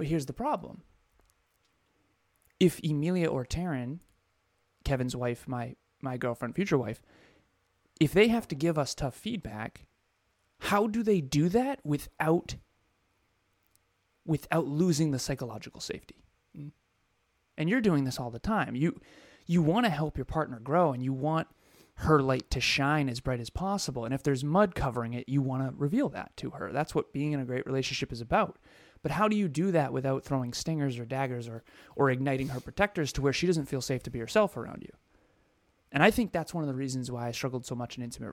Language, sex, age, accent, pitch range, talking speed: English, male, 30-49, American, 120-155 Hz, 195 wpm